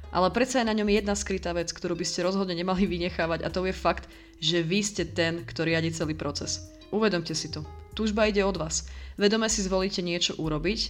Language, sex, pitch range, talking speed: Slovak, female, 165-195 Hz, 210 wpm